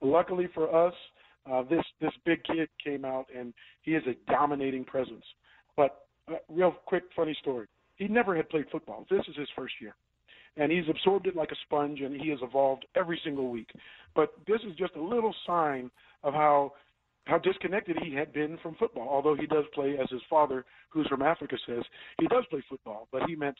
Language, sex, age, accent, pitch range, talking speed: English, male, 50-69, American, 140-180 Hz, 205 wpm